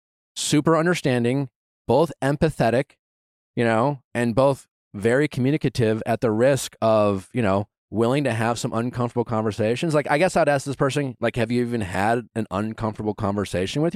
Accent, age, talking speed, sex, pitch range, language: American, 30-49, 165 wpm, male, 110-140 Hz, English